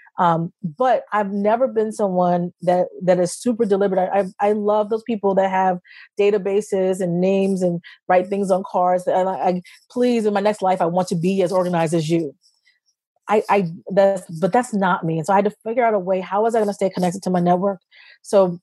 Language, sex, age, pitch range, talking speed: English, female, 30-49, 180-210 Hz, 225 wpm